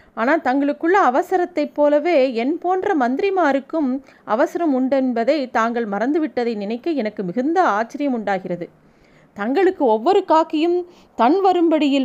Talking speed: 105 wpm